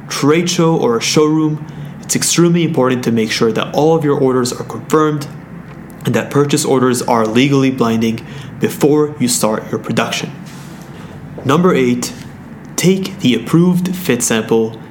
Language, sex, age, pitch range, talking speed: English, male, 20-39, 120-160 Hz, 150 wpm